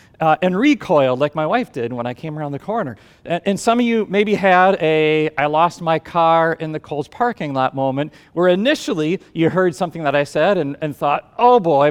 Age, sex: 40-59, male